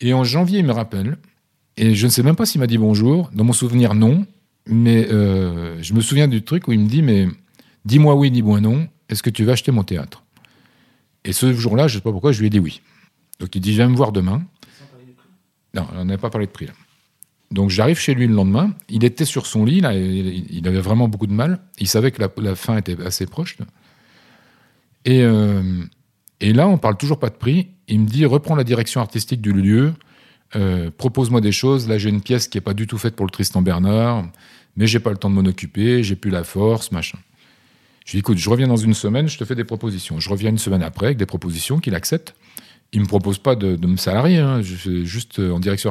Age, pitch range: 40-59, 100-130 Hz